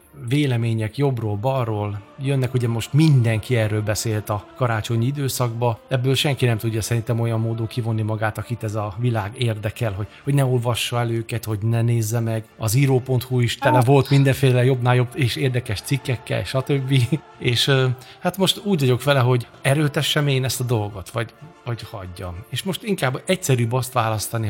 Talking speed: 165 wpm